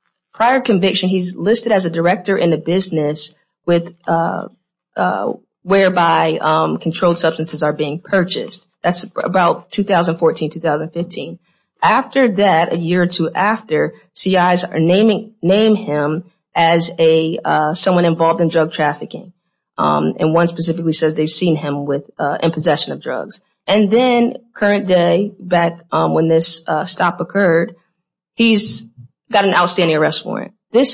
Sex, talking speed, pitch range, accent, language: female, 145 wpm, 160-195 Hz, American, English